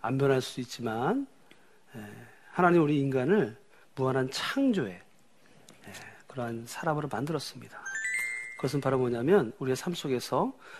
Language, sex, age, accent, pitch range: Korean, male, 40-59, native, 125-195 Hz